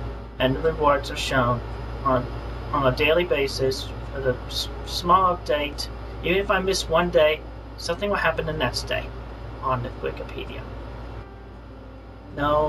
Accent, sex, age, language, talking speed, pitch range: American, male, 40-59, English, 140 wpm, 120-160 Hz